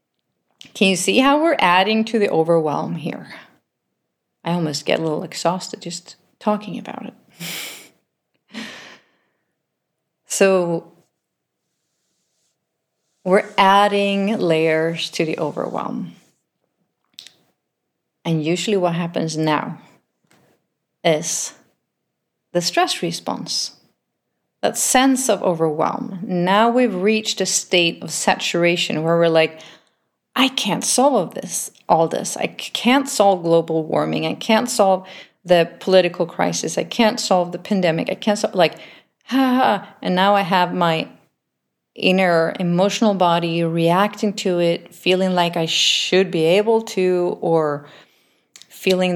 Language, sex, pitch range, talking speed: English, female, 170-210 Hz, 125 wpm